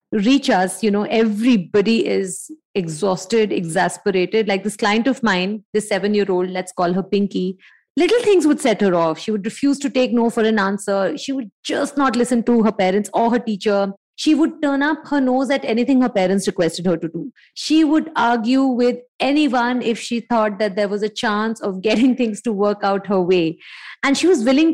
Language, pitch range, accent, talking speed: English, 200-265 Hz, Indian, 205 wpm